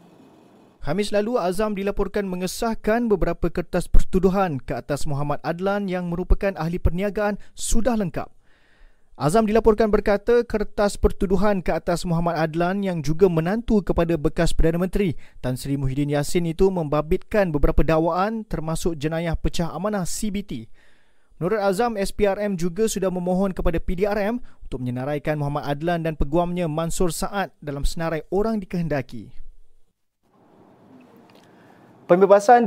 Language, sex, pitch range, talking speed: Malay, male, 150-195 Hz, 125 wpm